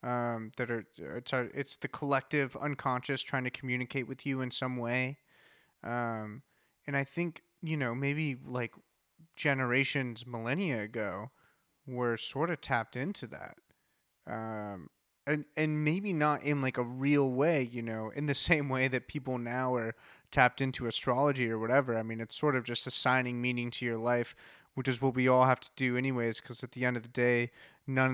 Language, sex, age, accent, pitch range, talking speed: English, male, 30-49, American, 120-135 Hz, 185 wpm